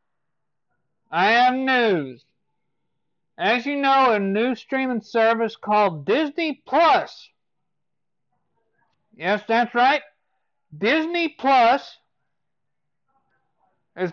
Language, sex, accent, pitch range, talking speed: English, male, American, 185-235 Hz, 80 wpm